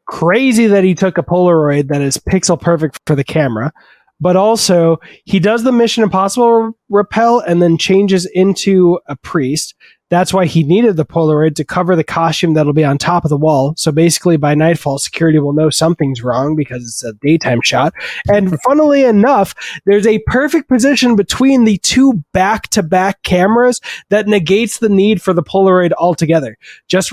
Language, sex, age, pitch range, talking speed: English, male, 20-39, 155-200 Hz, 175 wpm